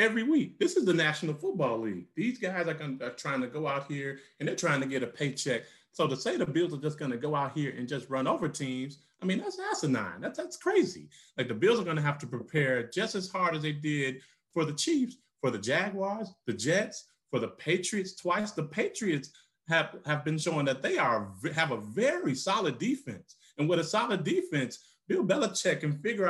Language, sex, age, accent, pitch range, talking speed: English, male, 30-49, American, 140-185 Hz, 225 wpm